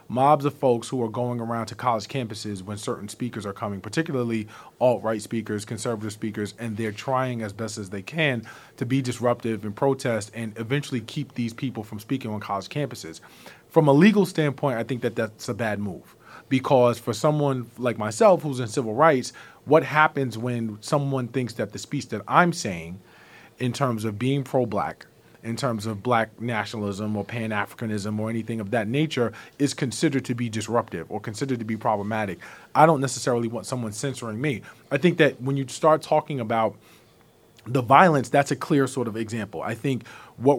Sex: male